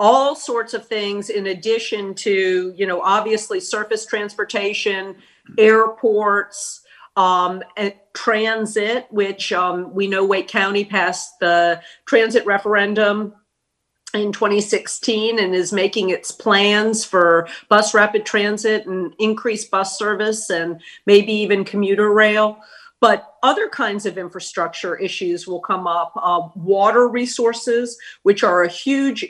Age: 50-69